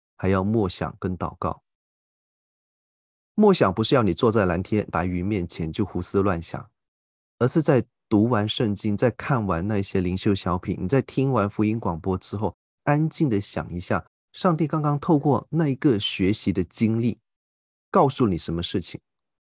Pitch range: 90-125 Hz